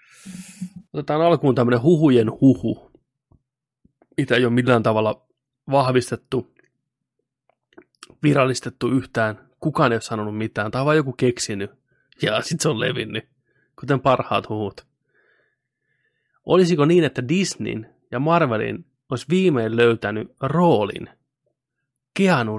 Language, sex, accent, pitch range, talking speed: Finnish, male, native, 115-140 Hz, 110 wpm